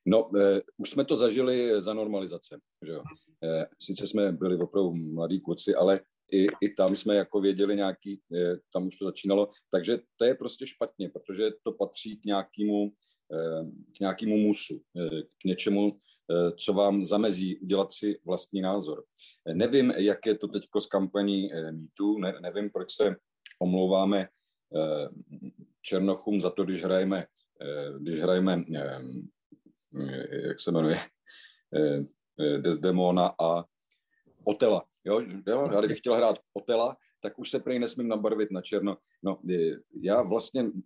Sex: male